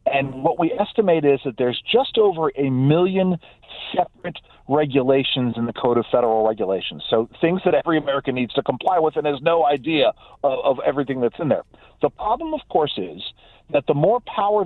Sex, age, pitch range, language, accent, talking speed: male, 40-59, 130-170 Hz, English, American, 190 wpm